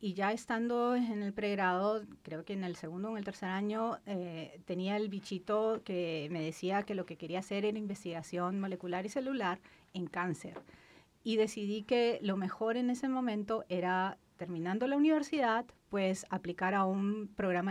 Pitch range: 175-220 Hz